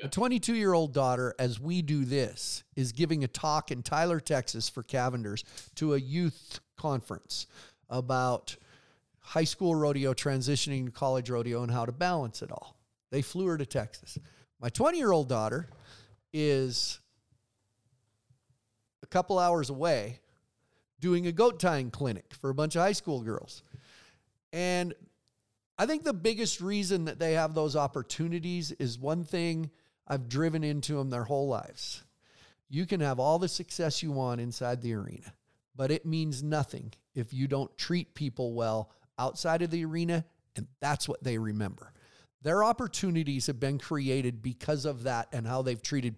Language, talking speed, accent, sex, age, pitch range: English, 160 wpm, American, male, 50-69, 125-165 Hz